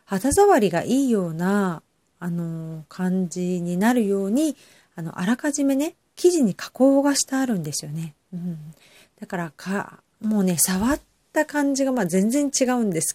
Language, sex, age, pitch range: Japanese, female, 40-59, 175-240 Hz